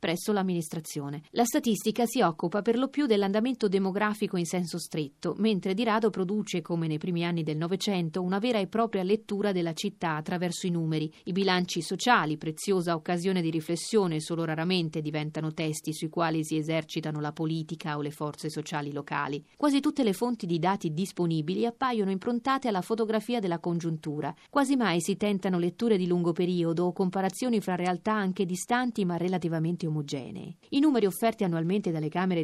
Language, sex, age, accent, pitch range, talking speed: Italian, female, 30-49, native, 165-220 Hz, 170 wpm